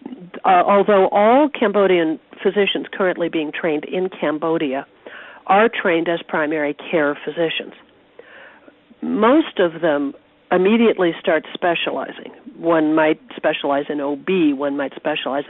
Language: English